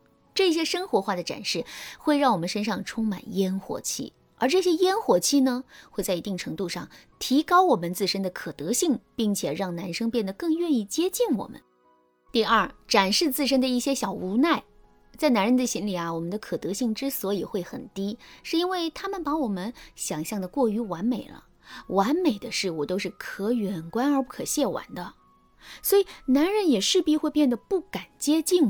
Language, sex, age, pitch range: Chinese, female, 20-39, 190-285 Hz